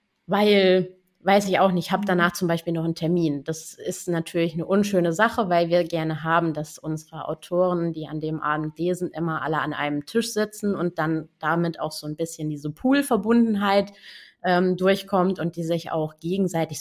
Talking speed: 185 wpm